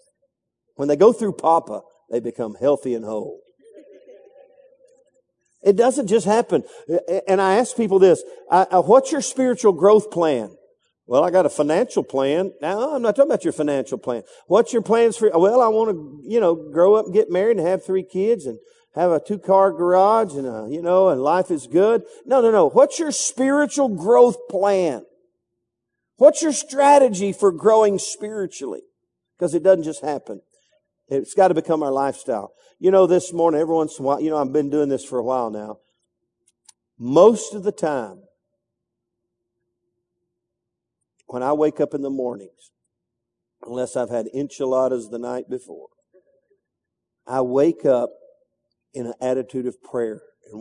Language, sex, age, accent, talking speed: English, male, 50-69, American, 165 wpm